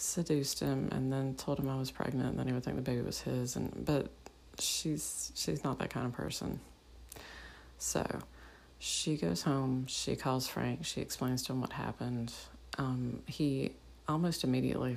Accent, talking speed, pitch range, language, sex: American, 175 wpm, 110-145 Hz, English, female